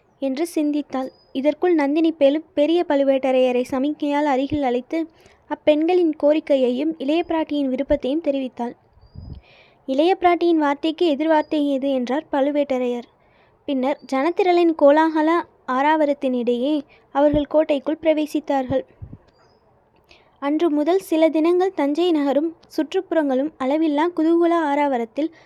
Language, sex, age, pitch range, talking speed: Tamil, female, 20-39, 275-320 Hz, 90 wpm